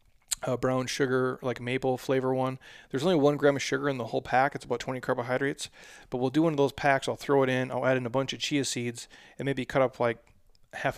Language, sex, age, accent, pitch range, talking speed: English, male, 30-49, American, 115-135 Hz, 245 wpm